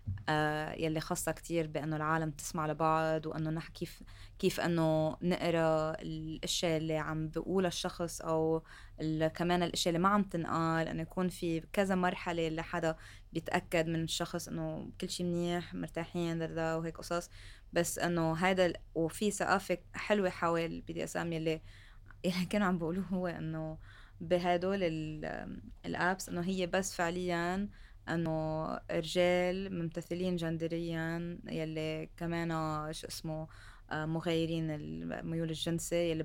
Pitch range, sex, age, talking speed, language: 155-175 Hz, female, 20-39, 125 wpm, Arabic